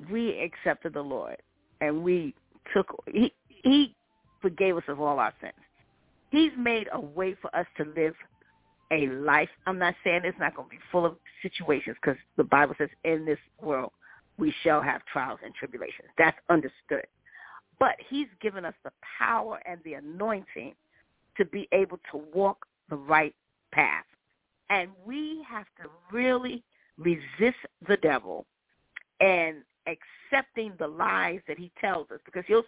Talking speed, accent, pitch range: 160 wpm, American, 160-230 Hz